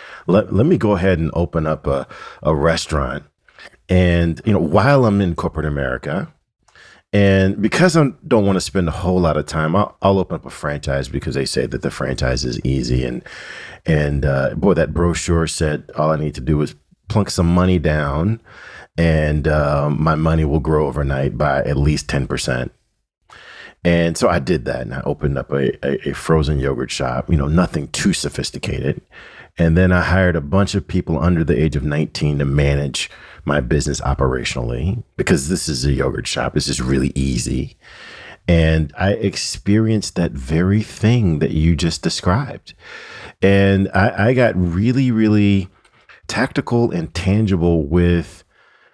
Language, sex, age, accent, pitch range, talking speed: English, male, 40-59, American, 75-95 Hz, 175 wpm